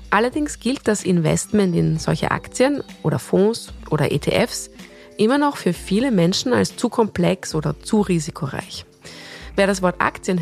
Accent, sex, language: German, female, German